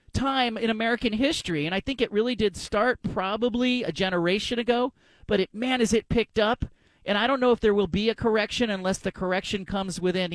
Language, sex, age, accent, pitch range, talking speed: English, male, 40-59, American, 170-215 Hz, 215 wpm